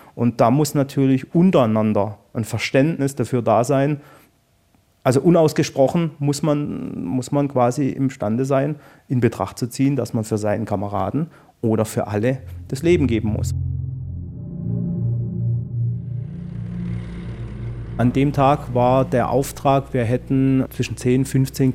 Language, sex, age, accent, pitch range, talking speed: German, male, 30-49, German, 120-145 Hz, 130 wpm